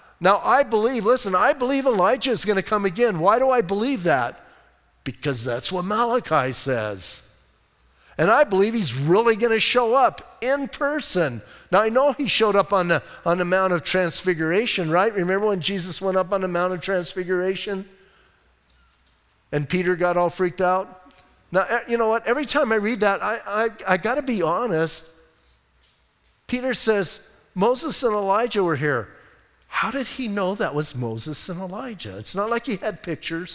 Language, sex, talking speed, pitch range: English, male, 180 wpm, 155-220 Hz